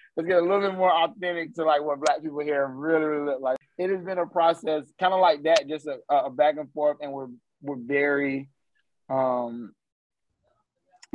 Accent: American